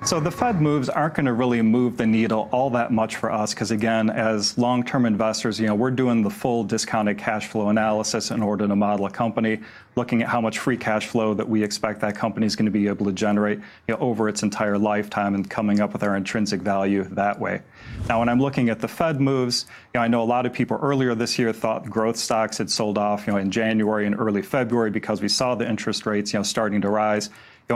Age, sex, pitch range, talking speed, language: 40-59, male, 105-120 Hz, 250 wpm, English